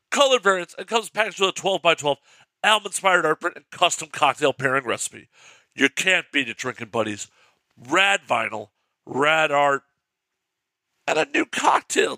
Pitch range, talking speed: 155-220 Hz, 150 wpm